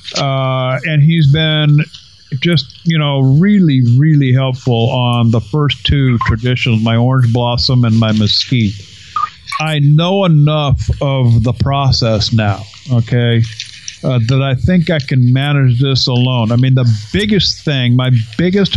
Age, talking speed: 50-69, 145 wpm